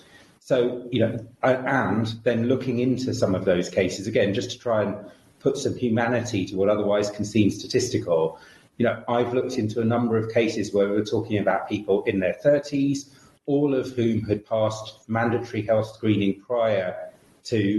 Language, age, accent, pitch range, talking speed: English, 30-49, British, 100-120 Hz, 175 wpm